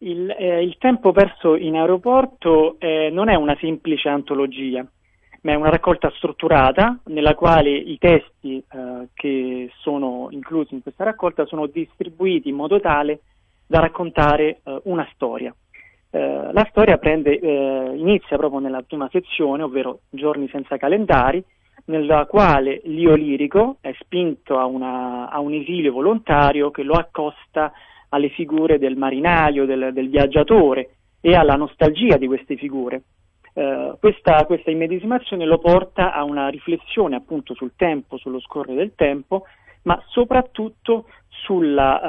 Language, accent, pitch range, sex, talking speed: Italian, native, 140-180 Hz, male, 145 wpm